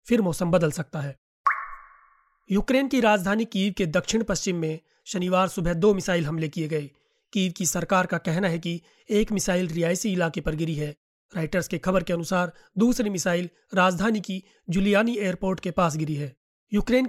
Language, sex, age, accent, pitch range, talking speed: Hindi, male, 30-49, native, 170-195 Hz, 65 wpm